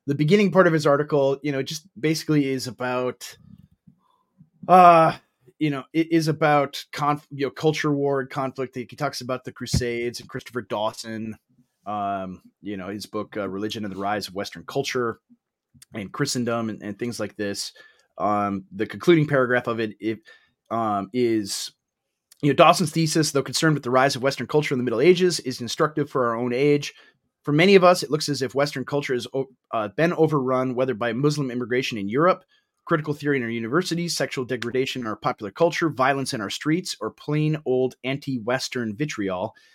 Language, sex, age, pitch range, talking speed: English, male, 30-49, 115-150 Hz, 185 wpm